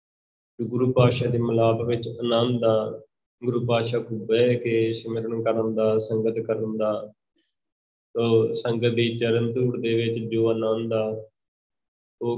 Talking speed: 145 wpm